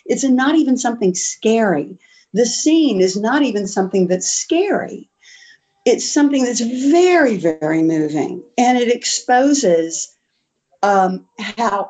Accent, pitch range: American, 180-255 Hz